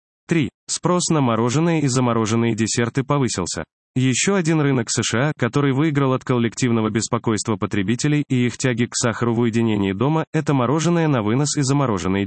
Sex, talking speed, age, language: male, 155 wpm, 20-39, Russian